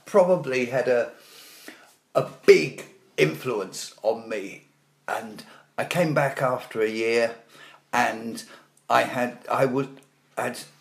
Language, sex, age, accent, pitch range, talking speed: English, male, 50-69, British, 125-170 Hz, 115 wpm